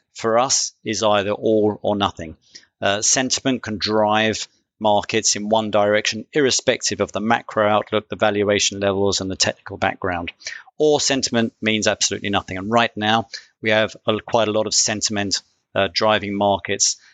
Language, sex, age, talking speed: English, male, 40-59, 160 wpm